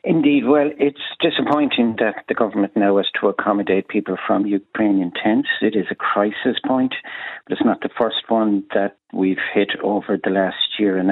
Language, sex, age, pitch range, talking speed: English, male, 50-69, 95-110 Hz, 185 wpm